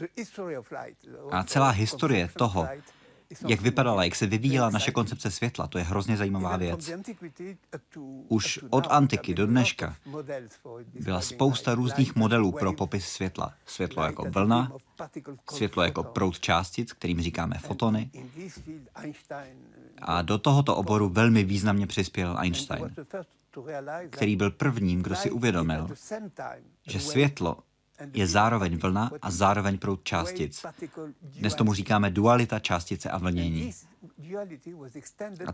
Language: Czech